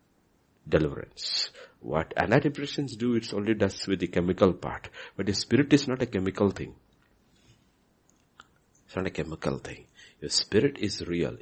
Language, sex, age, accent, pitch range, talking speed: English, male, 60-79, Indian, 90-125 Hz, 145 wpm